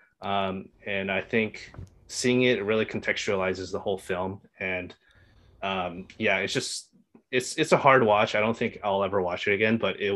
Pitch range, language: 95-110 Hz, English